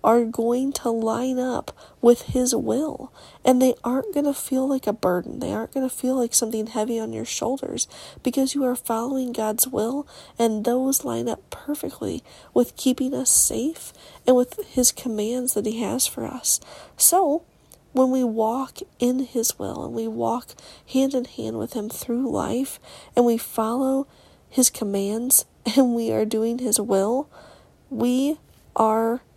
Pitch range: 225-265 Hz